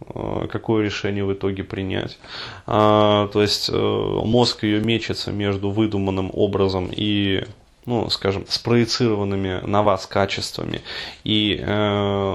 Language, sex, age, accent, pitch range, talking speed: Russian, male, 20-39, native, 105-120 Hz, 100 wpm